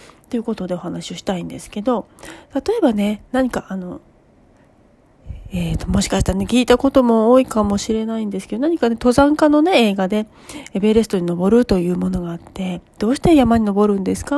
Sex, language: female, Japanese